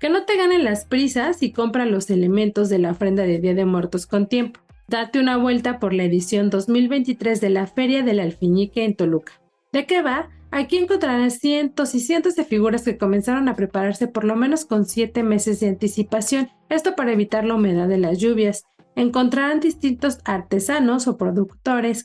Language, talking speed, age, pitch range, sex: Spanish, 185 wpm, 40-59, 200-255 Hz, female